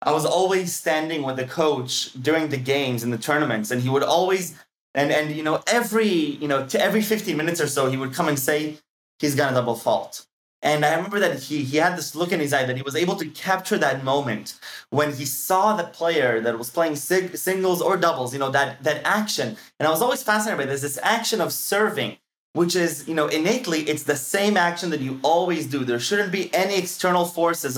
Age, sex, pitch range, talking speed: 20-39, male, 130-170 Hz, 230 wpm